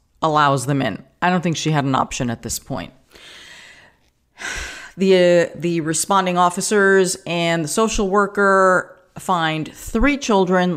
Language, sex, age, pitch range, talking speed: English, female, 40-59, 150-200 Hz, 140 wpm